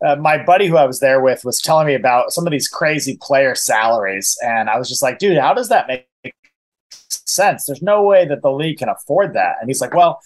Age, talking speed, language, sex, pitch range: 30-49, 245 wpm, English, male, 115-155 Hz